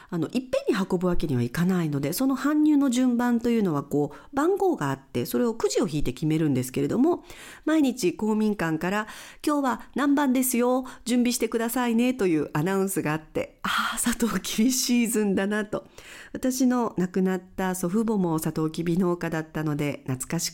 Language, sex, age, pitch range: Japanese, female, 50-69, 155-245 Hz